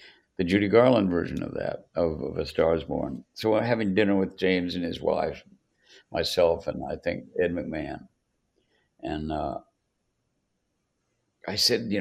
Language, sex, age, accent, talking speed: English, male, 60-79, American, 160 wpm